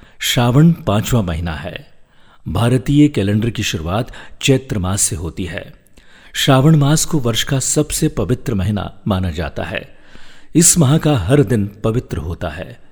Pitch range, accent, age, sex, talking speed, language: 100-135 Hz, native, 50-69, male, 100 wpm, Hindi